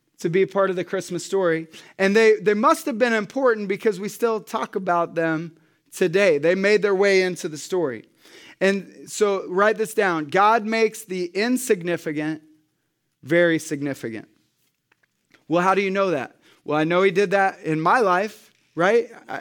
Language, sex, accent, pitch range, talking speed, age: English, male, American, 185-225 Hz, 175 wpm, 30-49